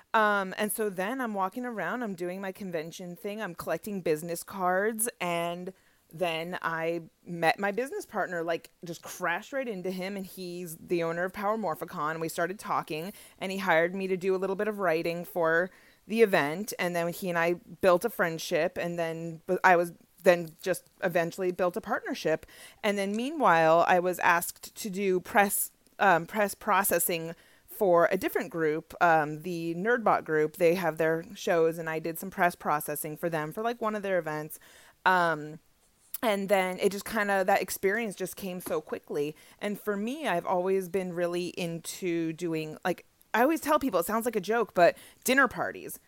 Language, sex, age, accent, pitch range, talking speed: English, female, 30-49, American, 170-205 Hz, 190 wpm